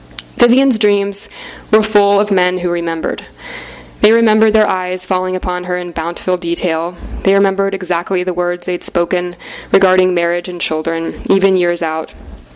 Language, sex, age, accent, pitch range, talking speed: English, female, 10-29, American, 175-205 Hz, 155 wpm